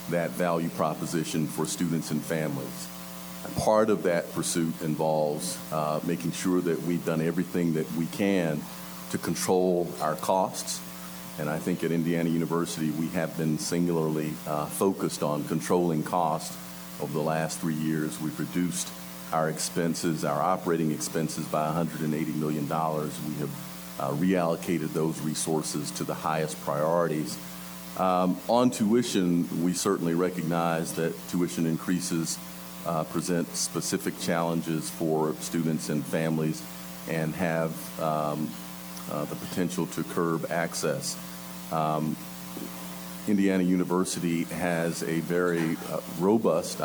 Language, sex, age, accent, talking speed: English, male, 50-69, American, 130 wpm